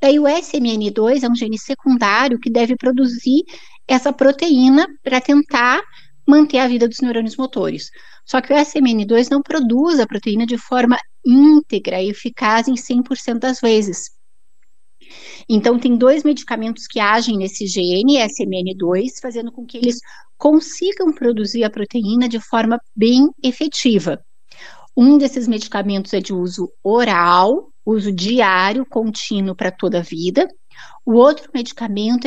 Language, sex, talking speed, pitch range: Portuguese, female, 140 wpm, 210-265 Hz